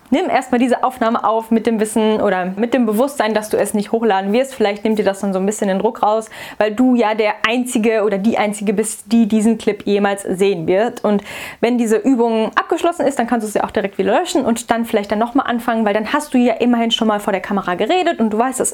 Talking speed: 260 wpm